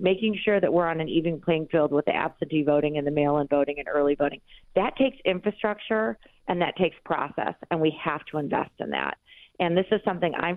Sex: female